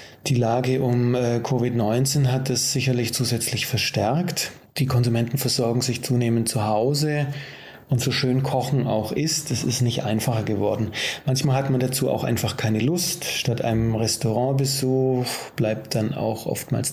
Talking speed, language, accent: 150 wpm, German, German